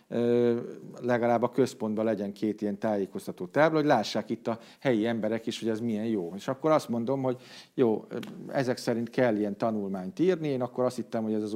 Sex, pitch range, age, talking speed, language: male, 105-135 Hz, 50-69, 195 wpm, Hungarian